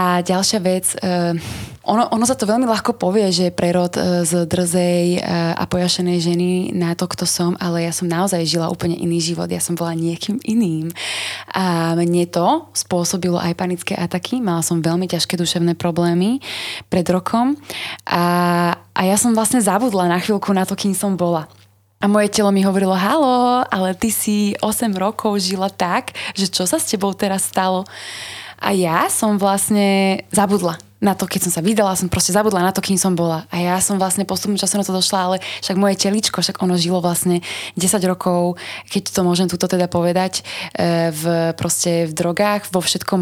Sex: female